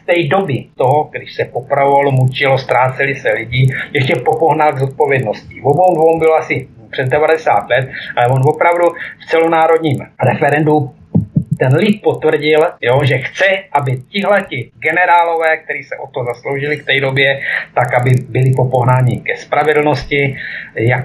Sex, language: male, Czech